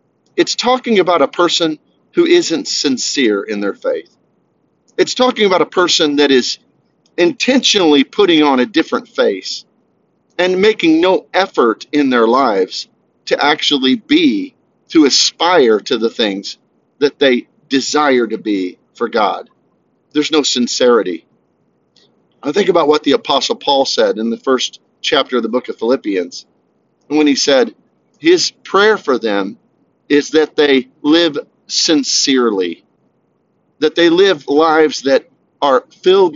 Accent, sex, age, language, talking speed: American, male, 40-59, English, 140 wpm